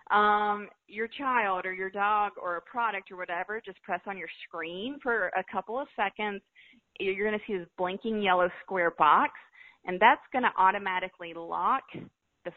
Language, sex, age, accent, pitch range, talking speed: English, female, 30-49, American, 175-220 Hz, 175 wpm